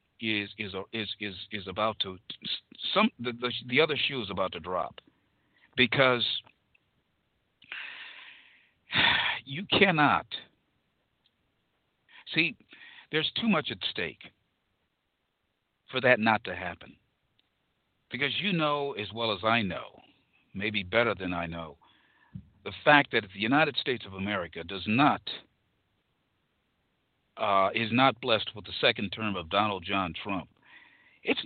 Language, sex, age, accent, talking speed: English, male, 50-69, American, 125 wpm